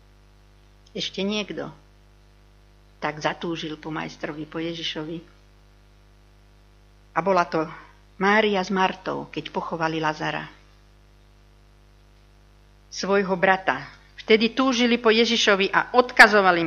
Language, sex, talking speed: Slovak, female, 90 wpm